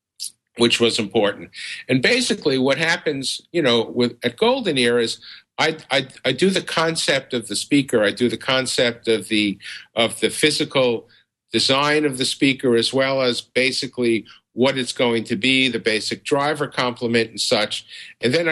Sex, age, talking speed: male, 50-69, 170 wpm